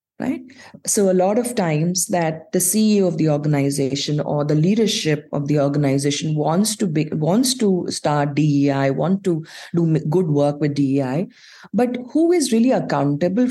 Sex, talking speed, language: female, 165 wpm, English